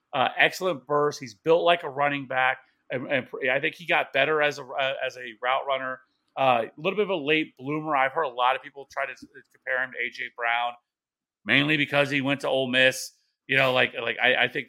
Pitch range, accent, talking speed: 130-150 Hz, American, 235 wpm